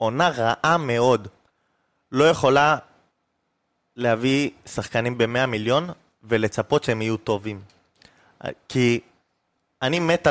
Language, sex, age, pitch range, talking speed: Hebrew, male, 20-39, 115-140 Hz, 95 wpm